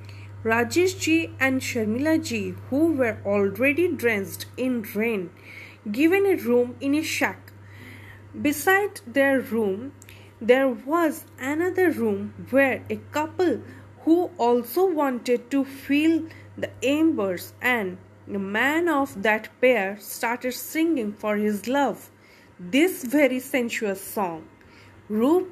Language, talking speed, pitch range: Hindi, 120 wpm, 190-305 Hz